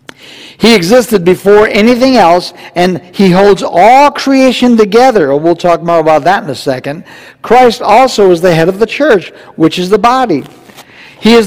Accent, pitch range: American, 145-205 Hz